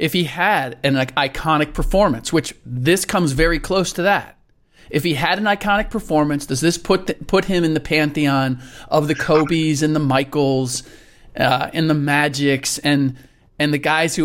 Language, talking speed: English, 185 wpm